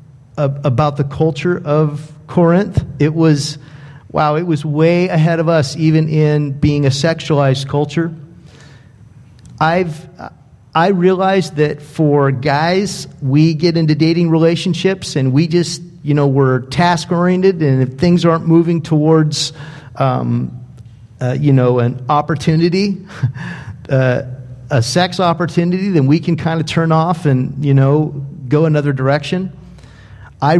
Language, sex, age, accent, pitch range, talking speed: English, male, 50-69, American, 140-165 Hz, 135 wpm